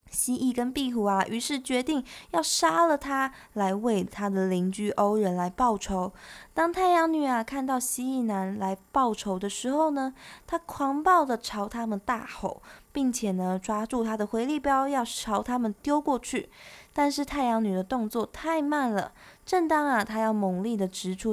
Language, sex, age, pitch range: Chinese, female, 20-39, 200-275 Hz